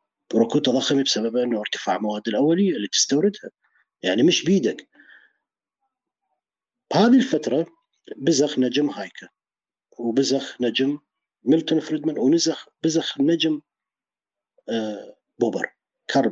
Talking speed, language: 100 wpm, Arabic